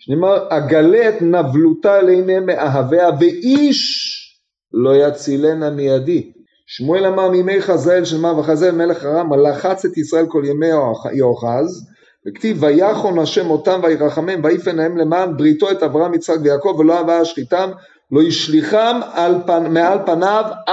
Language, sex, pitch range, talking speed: Hebrew, male, 155-200 Hz, 135 wpm